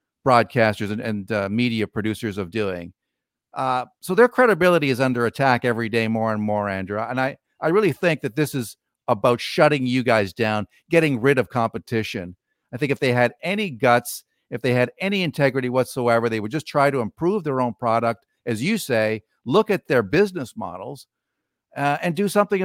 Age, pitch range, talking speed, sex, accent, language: 50-69, 120-190 Hz, 190 wpm, male, American, English